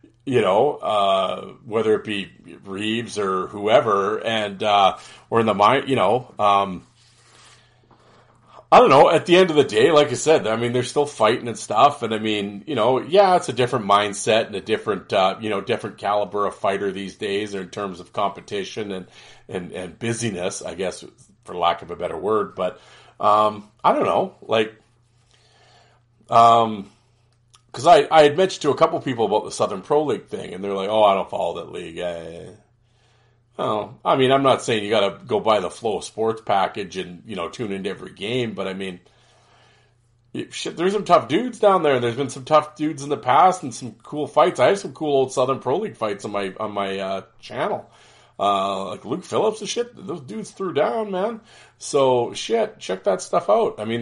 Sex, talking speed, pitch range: male, 205 wpm, 105-140 Hz